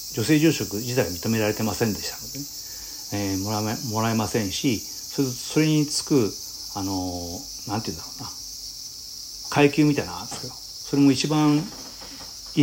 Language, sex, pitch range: Japanese, male, 95-130 Hz